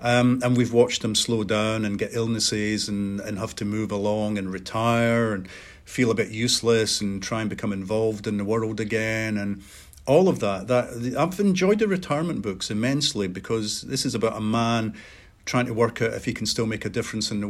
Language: English